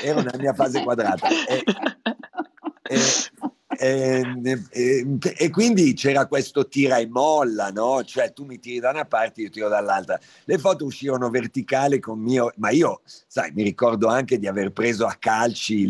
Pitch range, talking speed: 115-150 Hz, 165 wpm